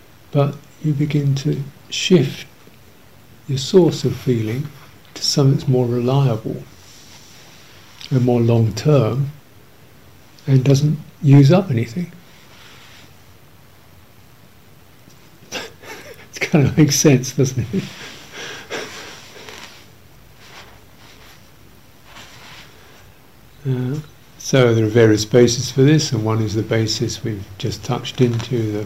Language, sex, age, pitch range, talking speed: English, male, 60-79, 110-135 Hz, 95 wpm